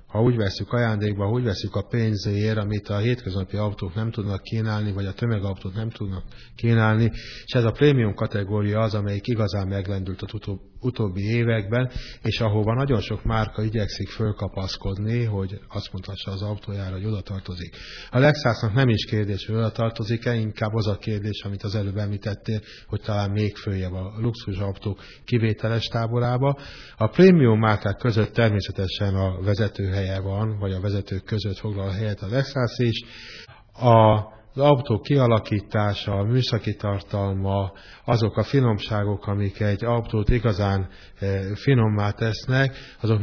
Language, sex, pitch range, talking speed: Hungarian, male, 100-115 Hz, 150 wpm